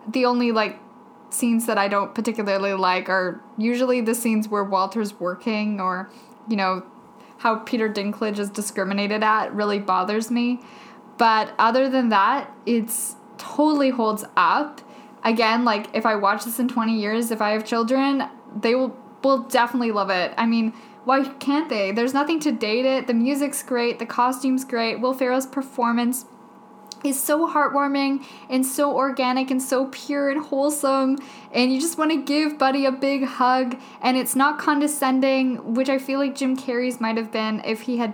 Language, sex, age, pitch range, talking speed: English, female, 10-29, 220-265 Hz, 175 wpm